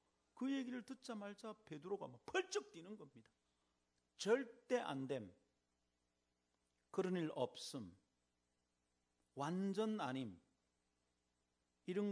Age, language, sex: 40-59, Korean, male